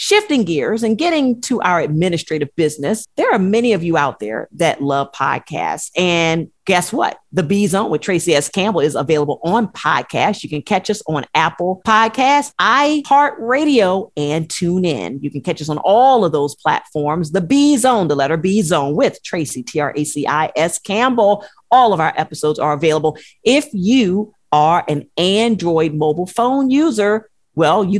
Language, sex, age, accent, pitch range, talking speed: English, female, 40-59, American, 155-225 Hz, 165 wpm